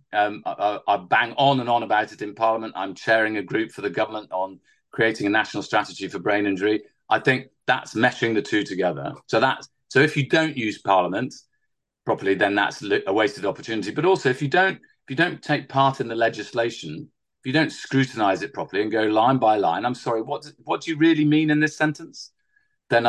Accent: British